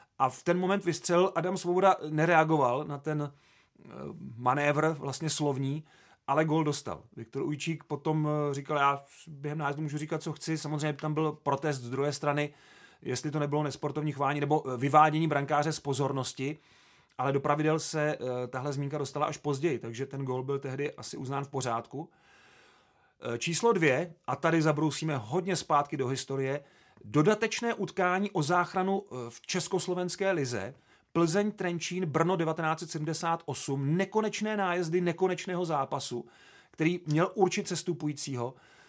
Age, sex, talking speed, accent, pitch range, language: 30-49, male, 140 wpm, native, 145-175 Hz, Czech